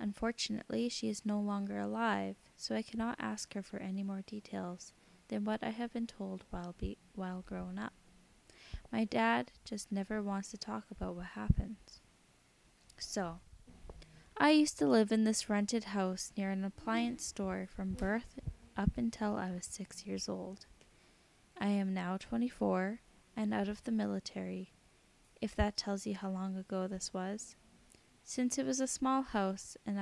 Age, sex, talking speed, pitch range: 10-29, female, 165 wpm, 190-220 Hz